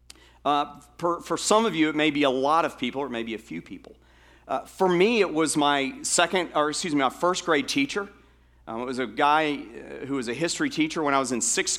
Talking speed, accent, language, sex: 230 wpm, American, English, male